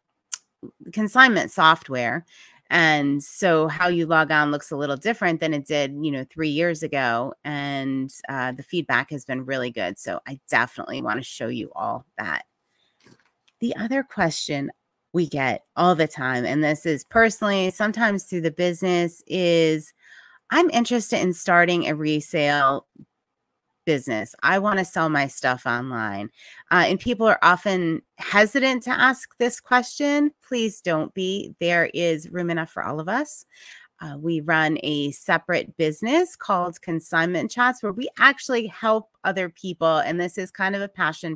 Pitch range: 150-205 Hz